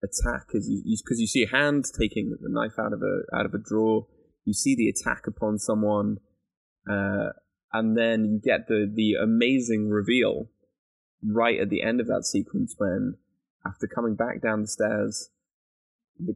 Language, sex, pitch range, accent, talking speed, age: English, male, 105-120 Hz, British, 180 wpm, 10-29